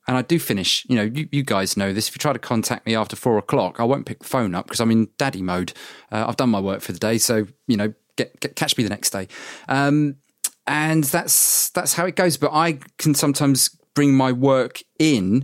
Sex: male